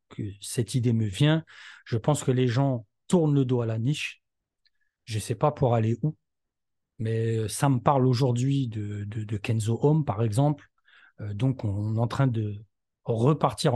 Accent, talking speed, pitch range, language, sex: French, 185 wpm, 115-150 Hz, French, male